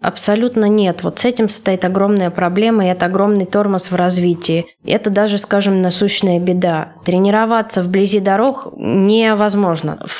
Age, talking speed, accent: 20-39, 140 wpm, native